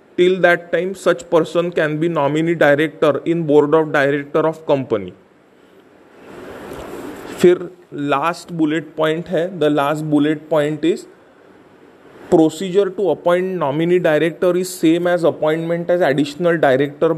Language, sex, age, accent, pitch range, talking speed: English, male, 30-49, Indian, 150-175 Hz, 130 wpm